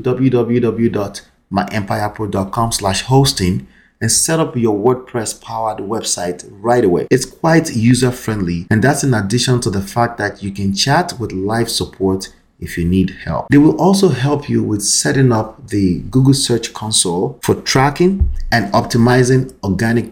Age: 30-49